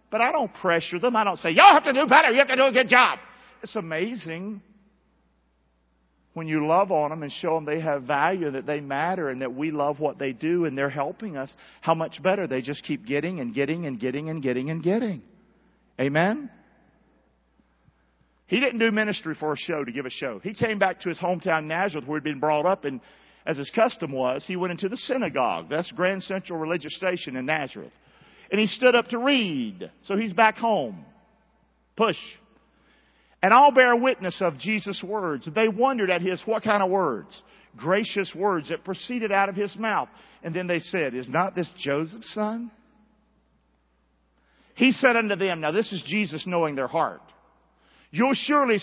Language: English